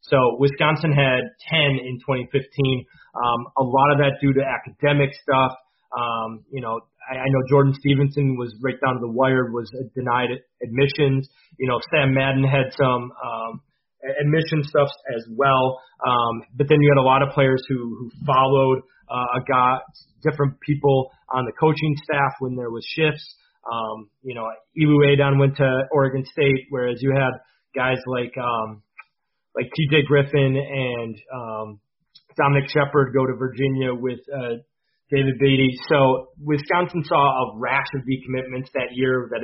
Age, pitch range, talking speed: 30-49, 125-140 Hz, 165 wpm